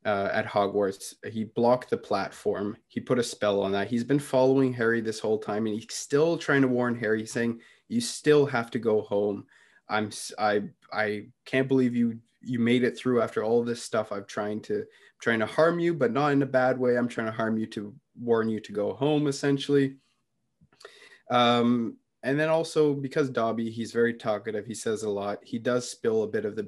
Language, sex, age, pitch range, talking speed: English, male, 20-39, 110-135 Hz, 215 wpm